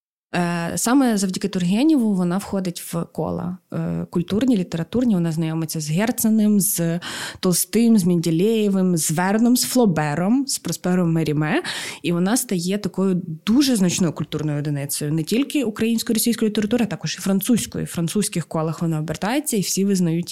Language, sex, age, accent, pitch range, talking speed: Ukrainian, female, 20-39, native, 170-220 Hz, 140 wpm